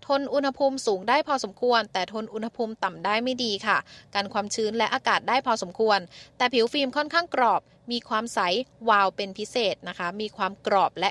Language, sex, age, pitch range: Thai, female, 20-39, 205-265 Hz